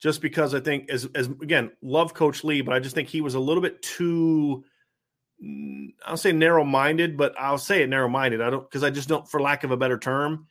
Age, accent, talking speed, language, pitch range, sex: 30-49, American, 240 wpm, English, 130-155 Hz, male